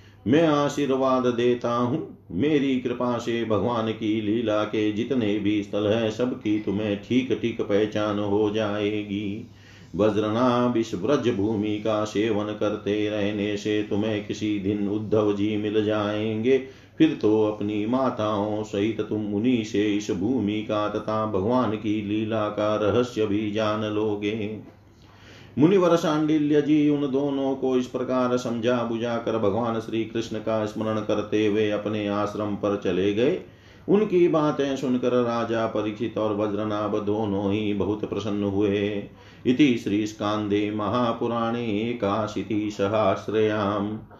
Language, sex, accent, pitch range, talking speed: Hindi, male, native, 105-115 Hz, 135 wpm